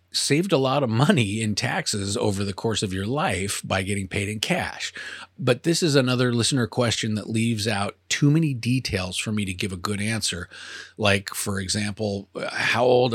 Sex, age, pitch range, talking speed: male, 40-59, 100-125 Hz, 190 wpm